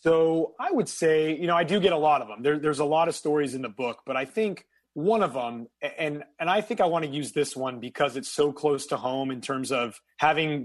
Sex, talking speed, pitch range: male, 270 wpm, 145-165 Hz